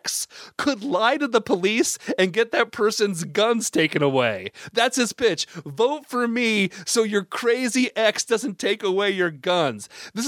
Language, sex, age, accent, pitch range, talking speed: English, male, 30-49, American, 165-235 Hz, 165 wpm